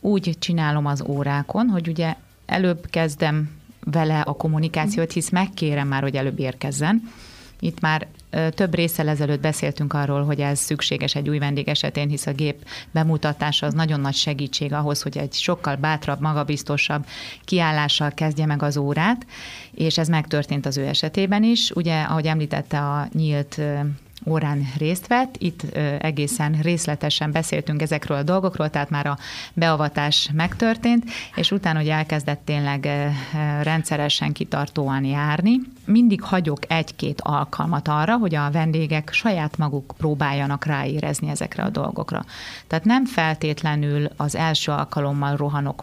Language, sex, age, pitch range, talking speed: Hungarian, female, 30-49, 145-165 Hz, 140 wpm